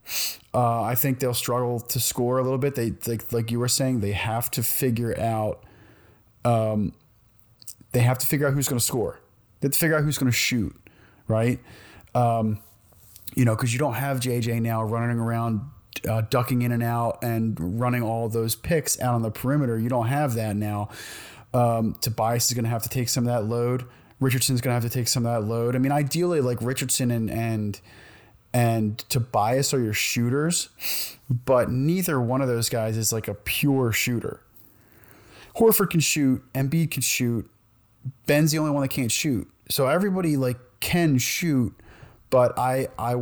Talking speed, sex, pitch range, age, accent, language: 185 wpm, male, 110-130 Hz, 30-49, American, English